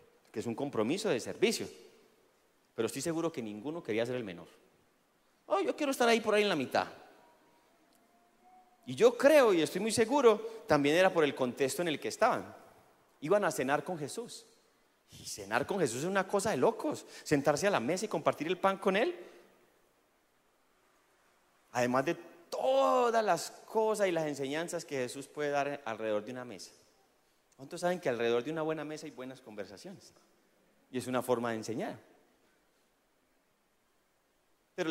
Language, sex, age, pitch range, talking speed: Spanish, male, 30-49, 135-215 Hz, 170 wpm